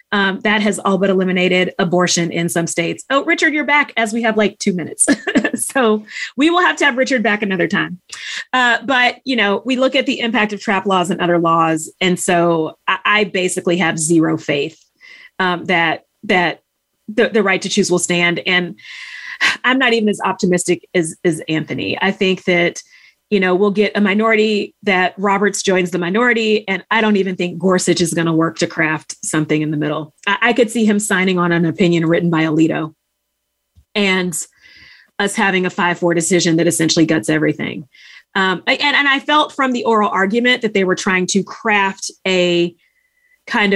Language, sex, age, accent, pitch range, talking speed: English, female, 30-49, American, 175-225 Hz, 195 wpm